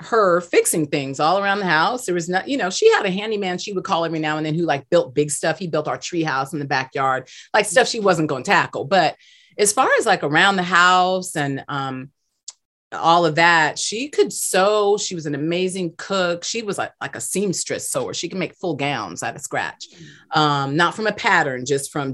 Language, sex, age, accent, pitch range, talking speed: English, female, 30-49, American, 150-195 Hz, 235 wpm